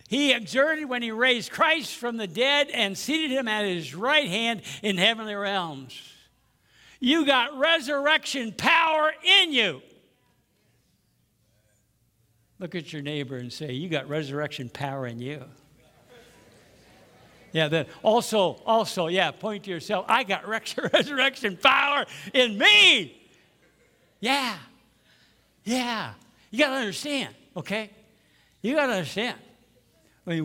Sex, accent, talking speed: male, American, 130 wpm